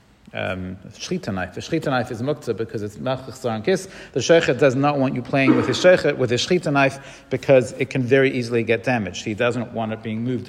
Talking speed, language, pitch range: 215 wpm, English, 120-155 Hz